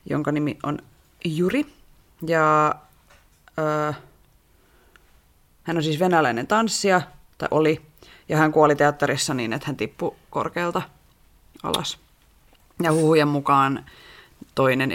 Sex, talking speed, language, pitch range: female, 110 wpm, Finnish, 145-180 Hz